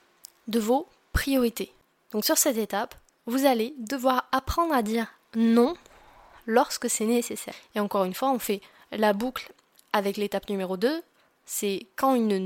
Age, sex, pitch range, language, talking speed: 10-29, female, 215-270 Hz, French, 155 wpm